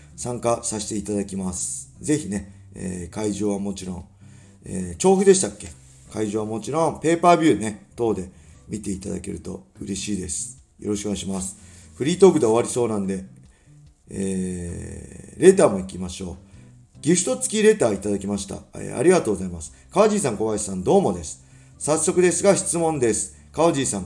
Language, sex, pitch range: Japanese, male, 95-150 Hz